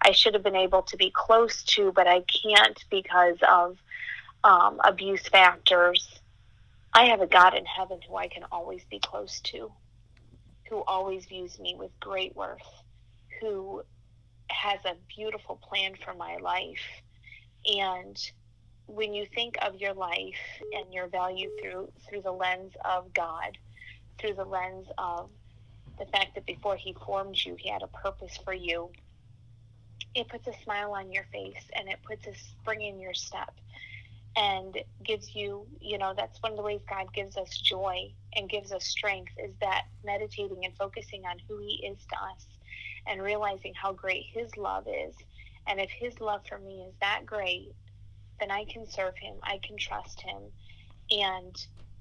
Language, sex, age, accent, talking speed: English, female, 30-49, American, 170 wpm